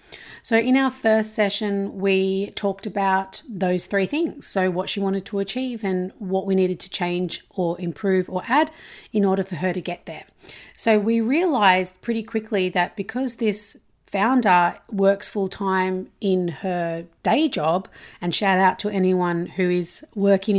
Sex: female